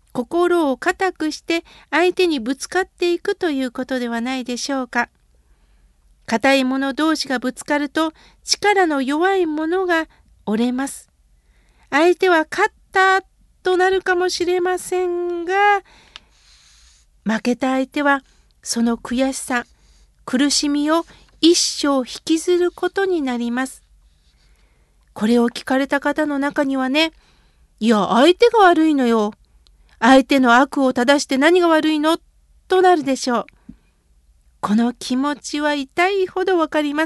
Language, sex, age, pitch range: Japanese, female, 50-69, 245-335 Hz